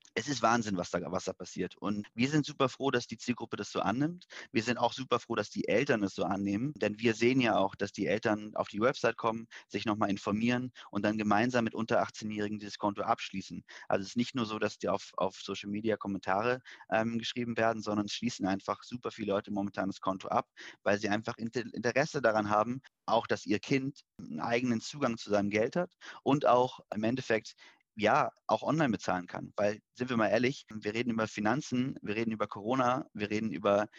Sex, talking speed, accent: male, 215 wpm, German